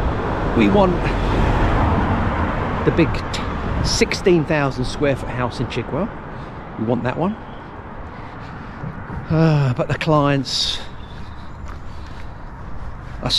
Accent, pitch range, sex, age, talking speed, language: British, 105-150 Hz, male, 40-59, 90 wpm, English